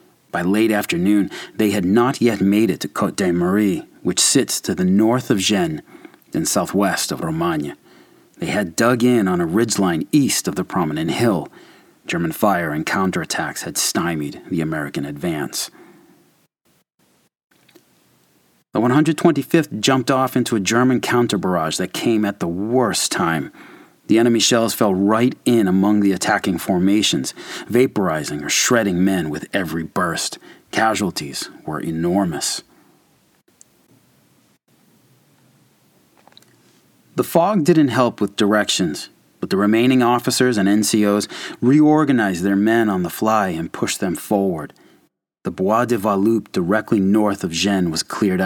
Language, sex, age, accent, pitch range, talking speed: English, male, 40-59, American, 100-120 Hz, 140 wpm